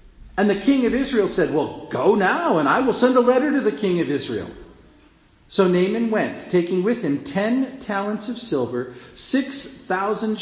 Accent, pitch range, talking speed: American, 145-235 Hz, 185 wpm